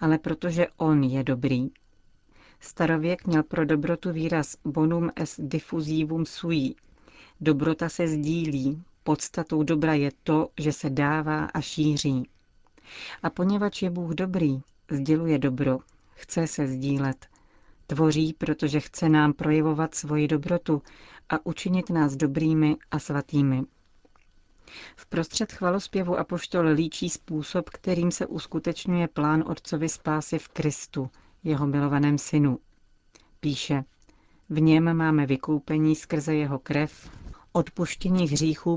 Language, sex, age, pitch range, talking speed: Czech, female, 40-59, 145-165 Hz, 115 wpm